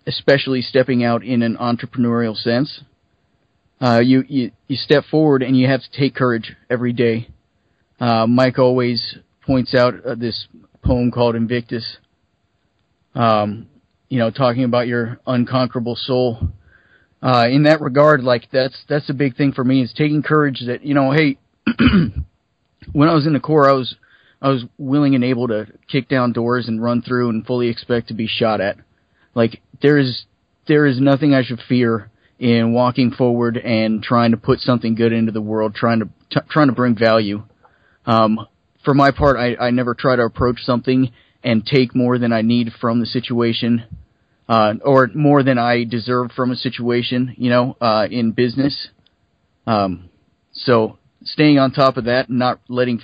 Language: English